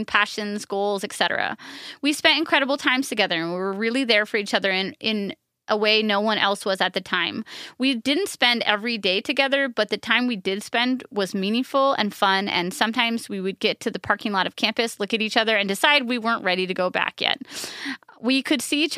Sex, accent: female, American